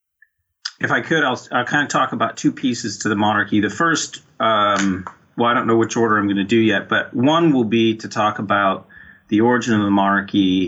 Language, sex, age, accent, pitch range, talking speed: English, male, 30-49, American, 95-115 Hz, 225 wpm